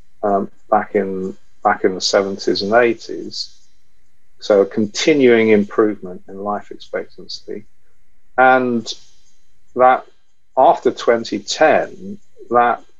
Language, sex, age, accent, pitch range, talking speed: English, male, 50-69, British, 100-120 Hz, 100 wpm